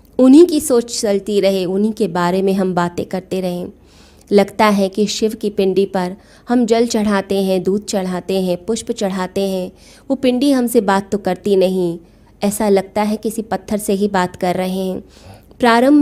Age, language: 20-39, Hindi